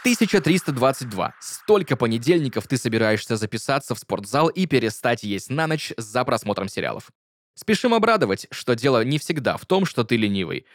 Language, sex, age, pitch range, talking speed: Russian, male, 20-39, 110-145 Hz, 150 wpm